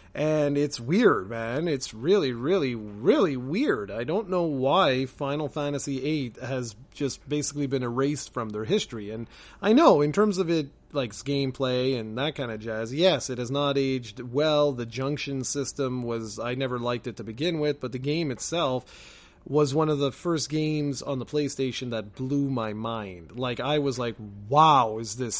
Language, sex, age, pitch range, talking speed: English, male, 30-49, 125-170 Hz, 185 wpm